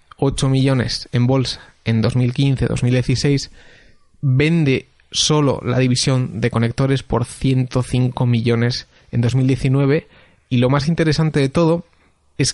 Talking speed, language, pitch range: 115 wpm, Spanish, 120-135 Hz